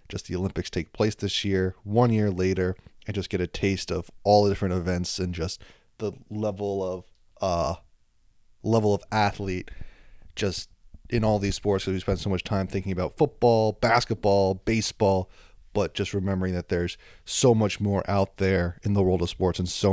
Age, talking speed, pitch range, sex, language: 30-49, 190 wpm, 95-115 Hz, male, English